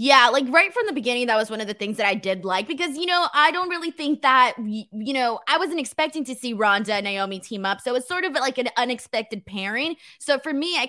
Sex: female